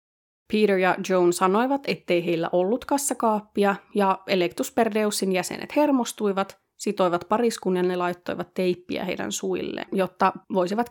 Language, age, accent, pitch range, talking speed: Finnish, 20-39, native, 185-220 Hz, 120 wpm